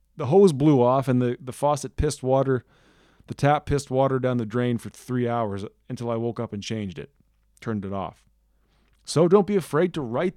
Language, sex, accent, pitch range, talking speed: English, male, American, 120-150 Hz, 210 wpm